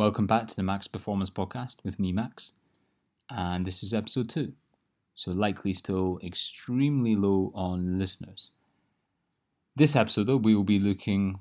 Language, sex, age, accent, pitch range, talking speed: English, male, 20-39, British, 95-105 Hz, 155 wpm